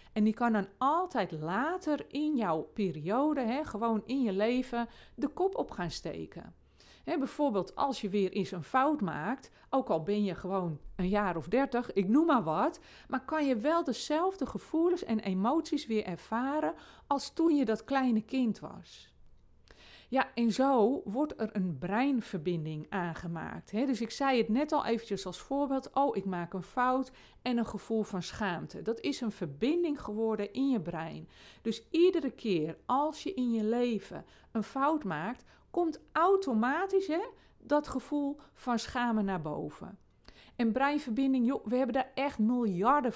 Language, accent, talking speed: Dutch, Dutch, 165 wpm